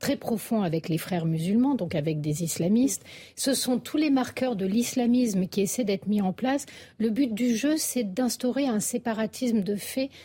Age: 50-69